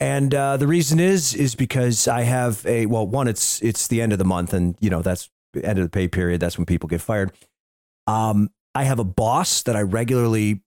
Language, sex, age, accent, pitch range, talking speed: English, male, 40-59, American, 105-140 Hz, 235 wpm